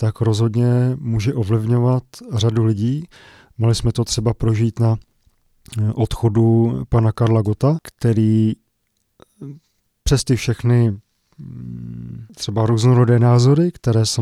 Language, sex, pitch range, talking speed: Czech, male, 110-125 Hz, 105 wpm